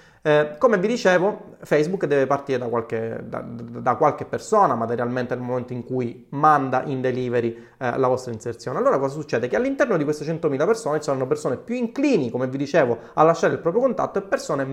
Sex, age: male, 30-49